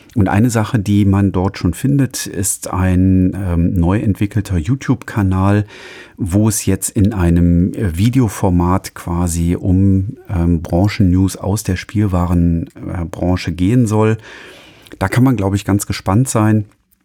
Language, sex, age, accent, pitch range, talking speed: German, male, 40-59, German, 90-105 Hz, 130 wpm